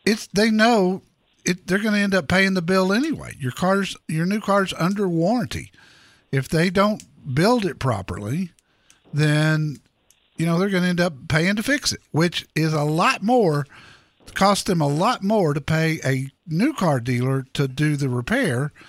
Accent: American